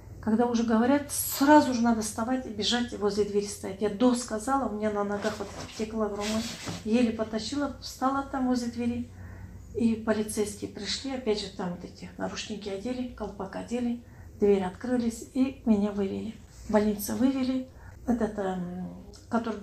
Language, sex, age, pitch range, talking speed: Russian, female, 40-59, 205-245 Hz, 160 wpm